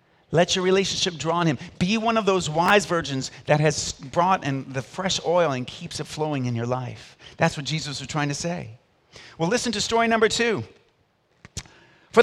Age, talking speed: 40-59, 195 wpm